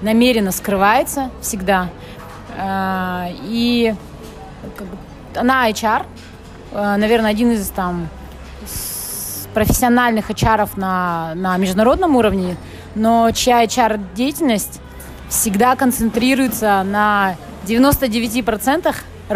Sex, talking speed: female, 80 wpm